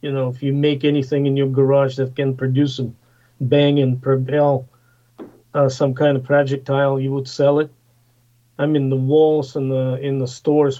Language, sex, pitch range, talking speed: English, male, 120-145 Hz, 190 wpm